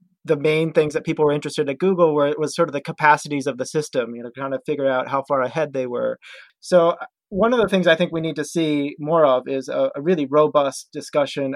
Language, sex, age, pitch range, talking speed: English, male, 30-49, 130-150 Hz, 260 wpm